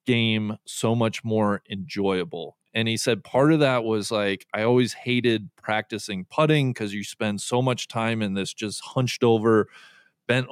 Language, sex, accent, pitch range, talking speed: English, male, American, 105-140 Hz, 170 wpm